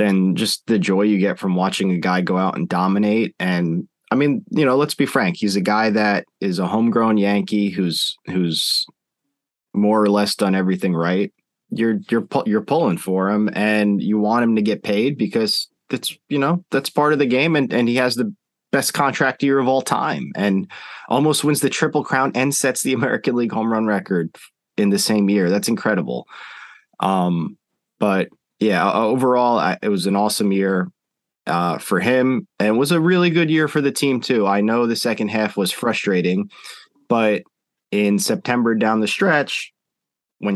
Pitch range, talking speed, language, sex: 95-130 Hz, 190 wpm, English, male